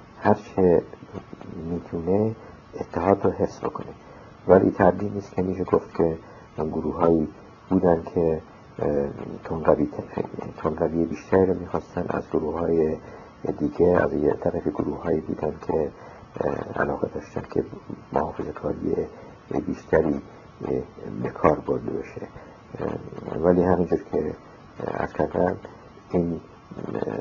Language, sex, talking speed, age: Persian, male, 105 wpm, 50-69